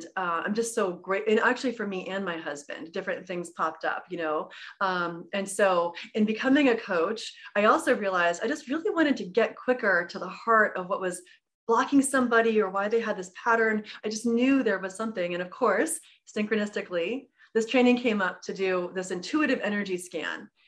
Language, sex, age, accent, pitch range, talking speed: English, female, 30-49, American, 180-220 Hz, 205 wpm